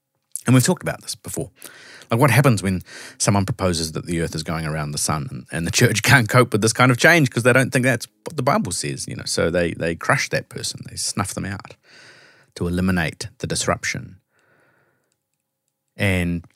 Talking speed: 205 wpm